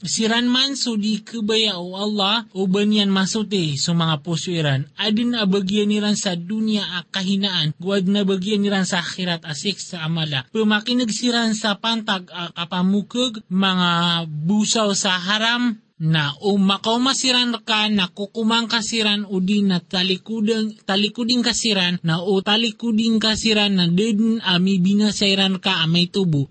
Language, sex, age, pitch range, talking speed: Filipino, male, 20-39, 180-220 Hz, 135 wpm